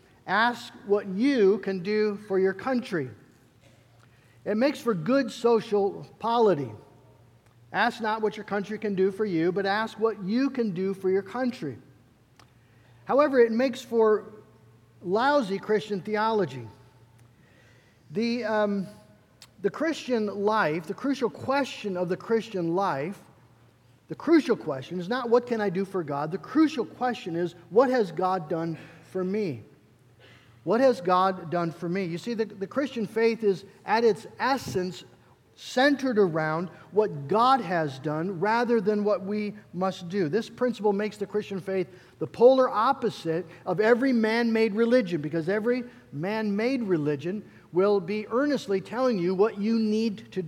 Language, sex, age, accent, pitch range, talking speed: English, male, 50-69, American, 165-220 Hz, 150 wpm